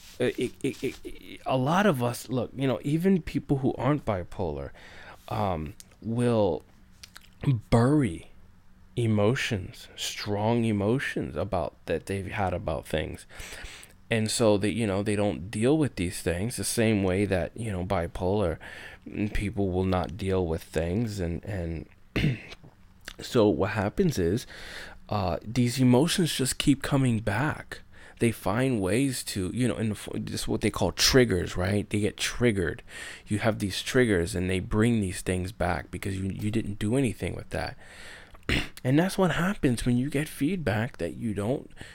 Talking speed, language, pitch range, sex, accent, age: 155 wpm, English, 95-125 Hz, male, American, 20-39